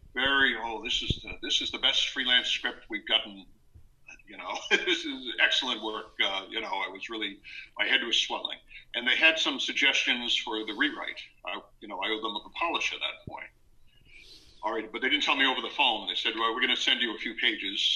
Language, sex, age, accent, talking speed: English, male, 50-69, American, 230 wpm